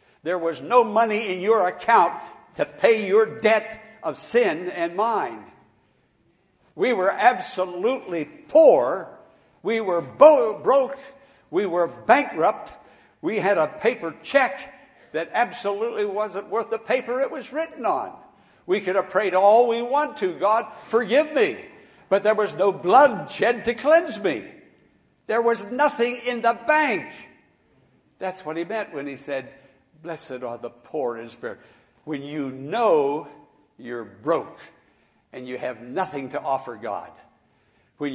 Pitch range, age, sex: 155-230 Hz, 60-79, male